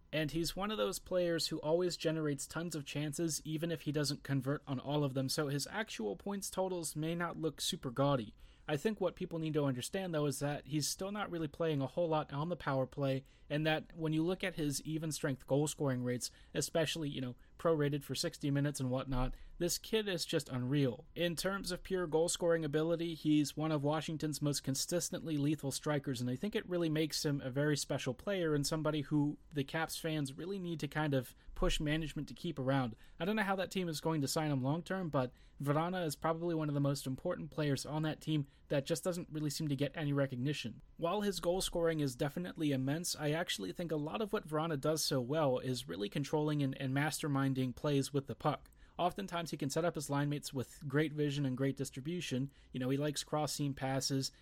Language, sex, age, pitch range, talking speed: English, male, 30-49, 140-165 Hz, 220 wpm